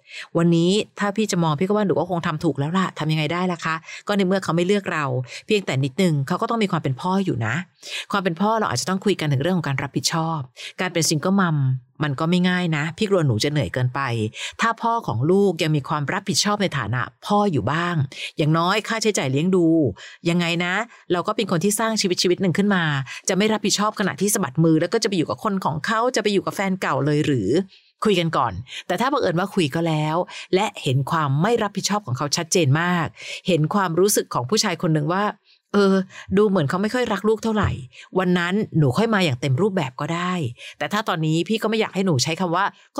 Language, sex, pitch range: Thai, female, 150-200 Hz